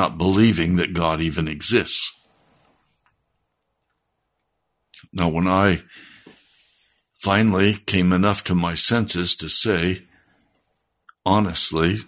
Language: English